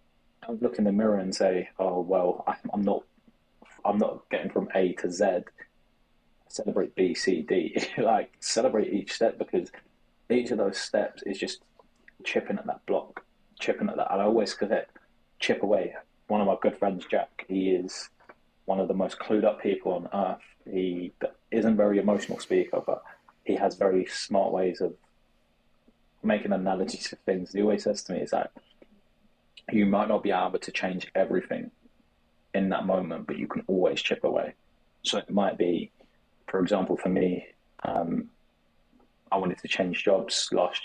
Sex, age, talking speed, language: male, 20-39, 180 wpm, English